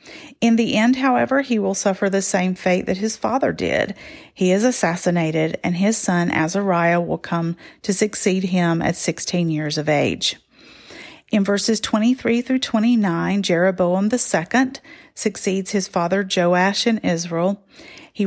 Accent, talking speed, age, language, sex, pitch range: American, 160 wpm, 40-59, English, female, 180-235 Hz